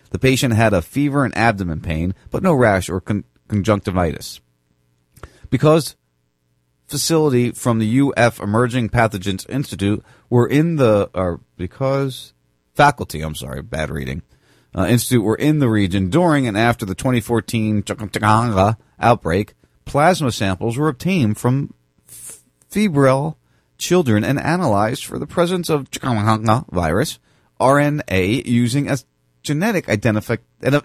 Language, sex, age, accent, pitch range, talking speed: English, male, 40-59, American, 85-125 Hz, 130 wpm